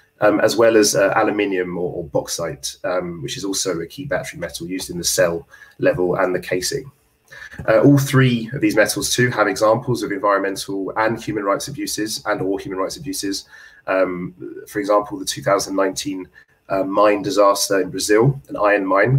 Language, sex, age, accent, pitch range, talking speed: English, male, 20-39, British, 100-135 Hz, 180 wpm